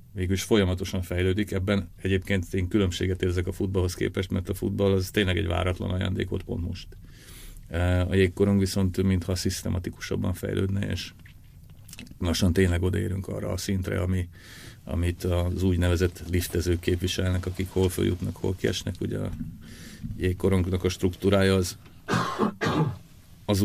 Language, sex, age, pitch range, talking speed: Hungarian, male, 40-59, 90-100 Hz, 130 wpm